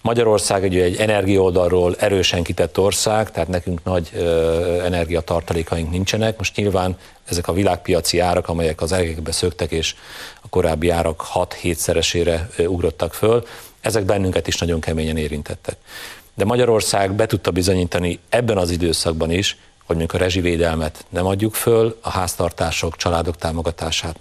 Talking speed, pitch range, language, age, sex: 140 wpm, 85-100 Hz, Hungarian, 40-59, male